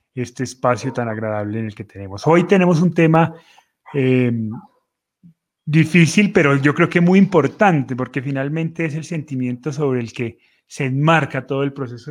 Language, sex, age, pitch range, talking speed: Spanish, male, 30-49, 130-160 Hz, 165 wpm